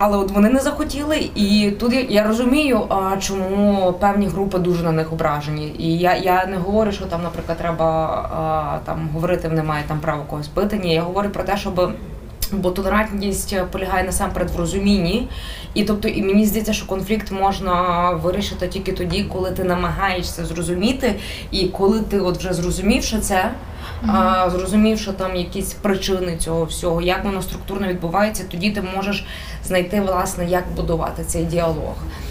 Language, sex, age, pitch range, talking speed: Ukrainian, female, 20-39, 175-205 Hz, 160 wpm